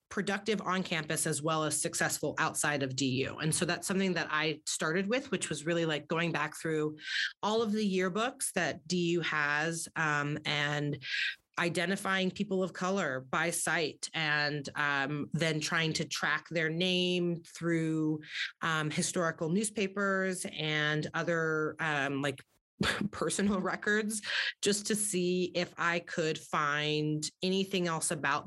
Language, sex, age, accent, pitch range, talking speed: English, female, 30-49, American, 155-185 Hz, 145 wpm